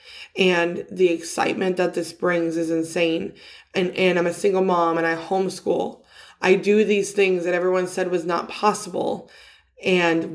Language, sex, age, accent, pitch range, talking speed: English, female, 20-39, American, 170-210 Hz, 160 wpm